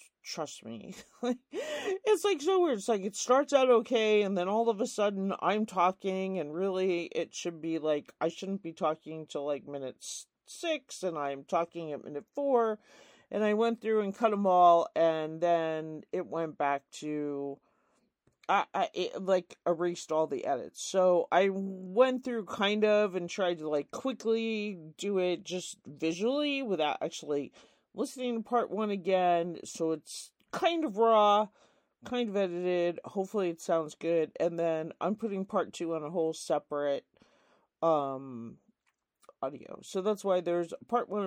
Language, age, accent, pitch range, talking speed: English, 40-59, American, 165-230 Hz, 165 wpm